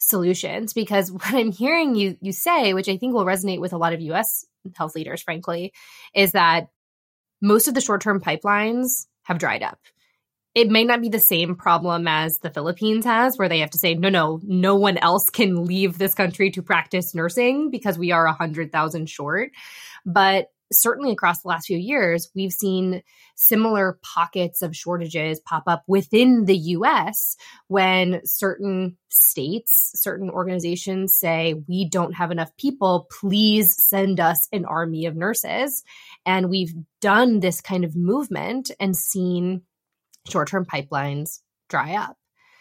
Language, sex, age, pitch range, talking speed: English, female, 20-39, 170-210 Hz, 160 wpm